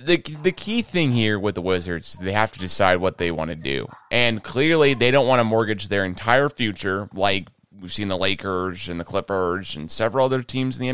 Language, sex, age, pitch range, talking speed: English, male, 30-49, 100-150 Hz, 225 wpm